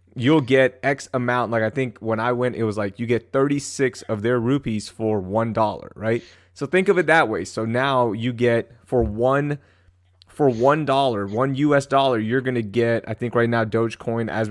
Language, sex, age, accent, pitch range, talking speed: English, male, 20-39, American, 110-135 Hz, 205 wpm